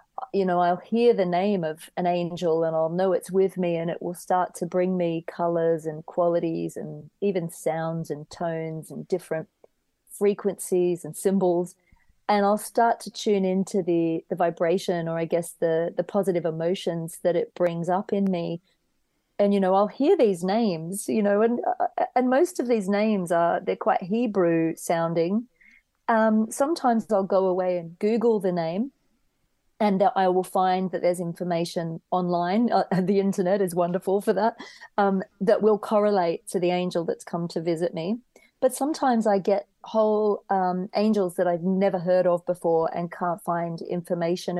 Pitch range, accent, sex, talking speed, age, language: 170-205 Hz, Australian, female, 175 wpm, 30-49, English